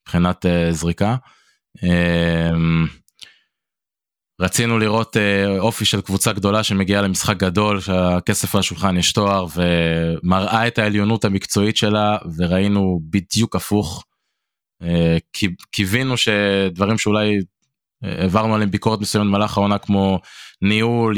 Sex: male